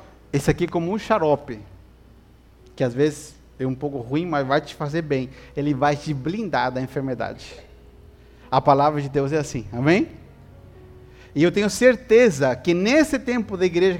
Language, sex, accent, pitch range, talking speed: Portuguese, male, Brazilian, 145-215 Hz, 170 wpm